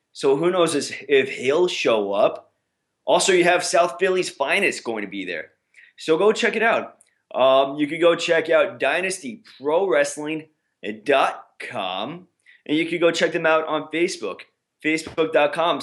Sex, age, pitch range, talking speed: male, 20-39, 135-175 Hz, 150 wpm